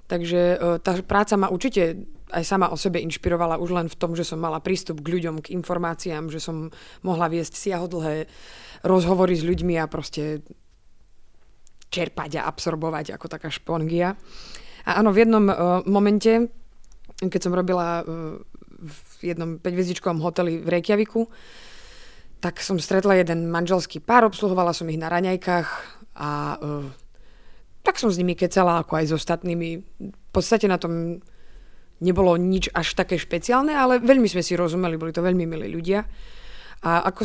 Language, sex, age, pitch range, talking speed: Slovak, female, 20-39, 165-190 Hz, 155 wpm